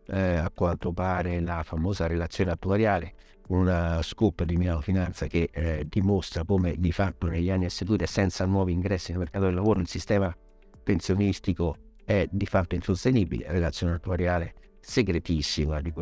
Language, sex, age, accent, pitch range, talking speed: Italian, male, 60-79, native, 85-105 Hz, 160 wpm